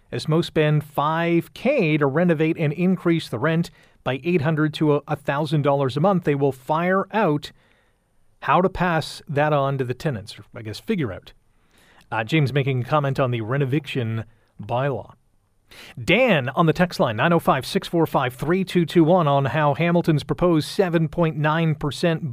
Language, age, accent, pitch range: English, 40-59, American, 135-180 Hz